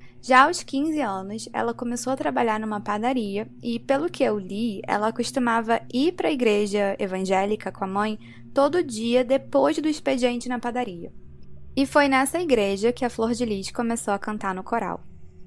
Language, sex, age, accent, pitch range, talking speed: Portuguese, female, 10-29, Brazilian, 205-265 Hz, 180 wpm